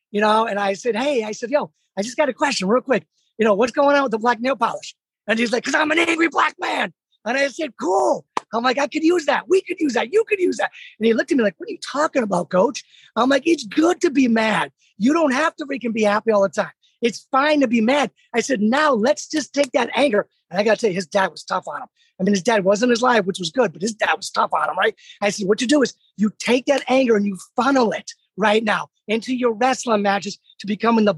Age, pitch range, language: 30-49, 215-275 Hz, English